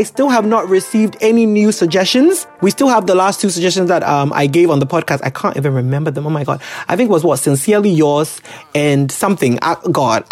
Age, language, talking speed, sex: 30-49, English, 240 wpm, male